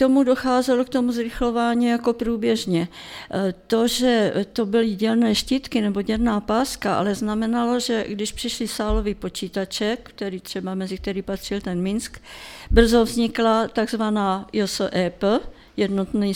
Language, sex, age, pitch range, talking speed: Czech, female, 50-69, 185-225 Hz, 130 wpm